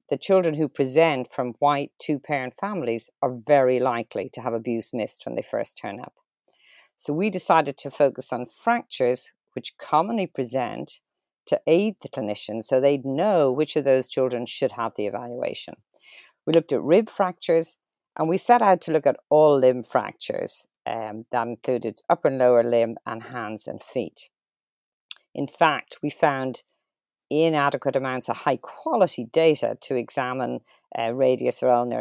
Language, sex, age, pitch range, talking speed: English, female, 50-69, 125-160 Hz, 165 wpm